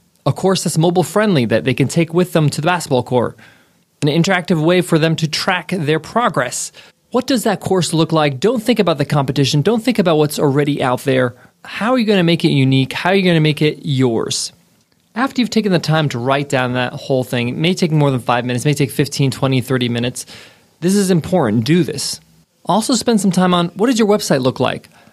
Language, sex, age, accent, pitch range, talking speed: English, male, 20-39, American, 135-180 Hz, 230 wpm